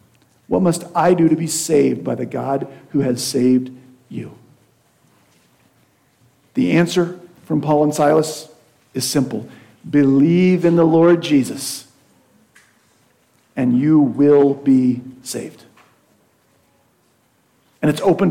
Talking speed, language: 115 wpm, English